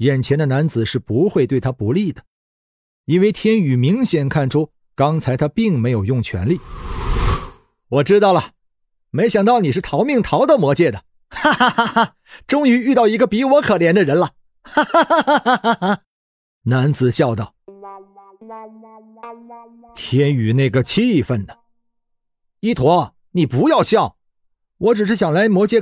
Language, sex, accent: Chinese, male, native